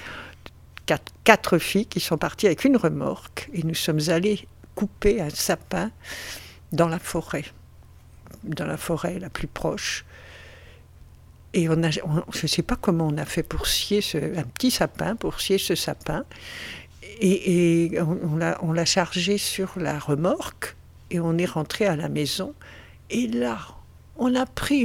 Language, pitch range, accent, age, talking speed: French, 155-200 Hz, French, 60-79, 165 wpm